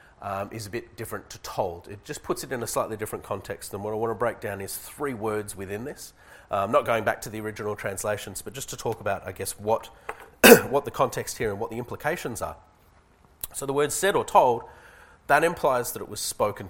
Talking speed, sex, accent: 235 wpm, male, Australian